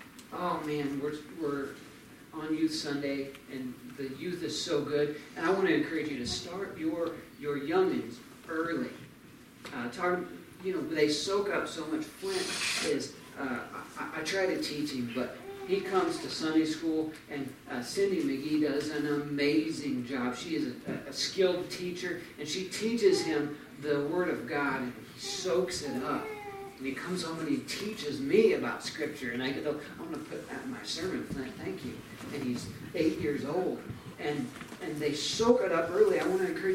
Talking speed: 190 wpm